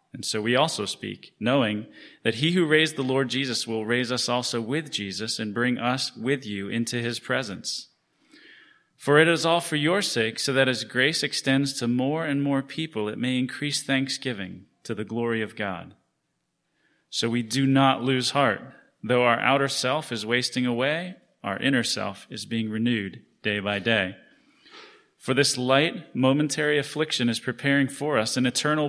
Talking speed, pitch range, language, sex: 180 wpm, 115-145 Hz, English, male